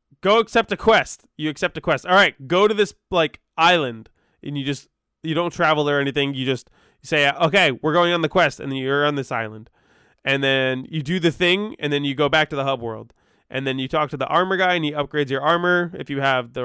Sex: male